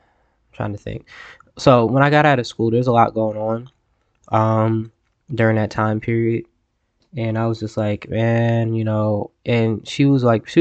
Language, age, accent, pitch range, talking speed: English, 10-29, American, 105-115 Hz, 185 wpm